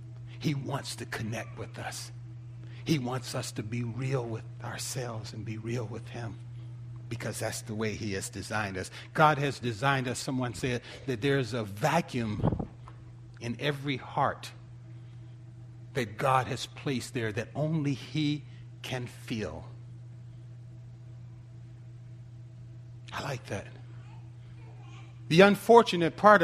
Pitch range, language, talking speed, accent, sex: 120-145 Hz, English, 125 wpm, American, male